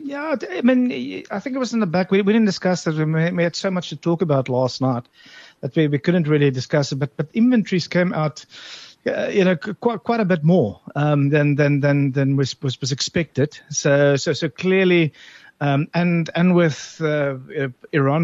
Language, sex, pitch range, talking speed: English, male, 135-170 Hz, 210 wpm